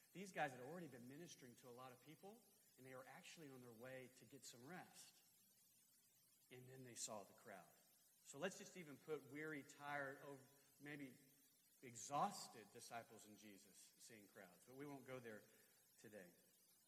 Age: 40-59